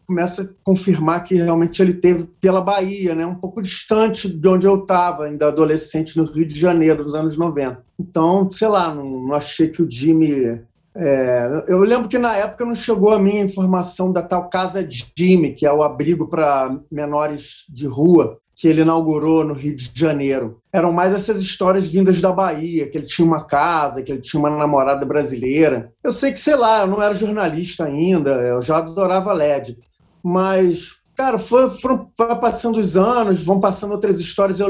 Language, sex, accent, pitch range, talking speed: Portuguese, male, Brazilian, 150-190 Hz, 190 wpm